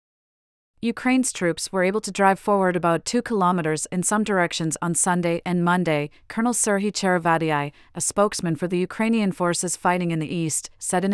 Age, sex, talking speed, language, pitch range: 30-49, female, 170 wpm, English, 170-200 Hz